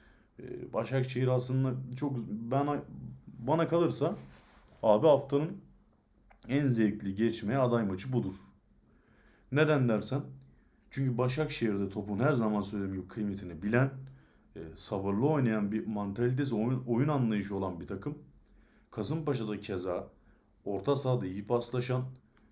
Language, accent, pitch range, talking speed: Turkish, native, 100-125 Hz, 110 wpm